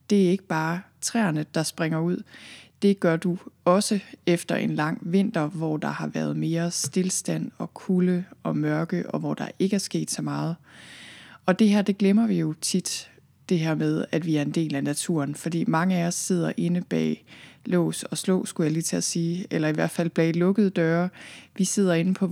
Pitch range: 160-190 Hz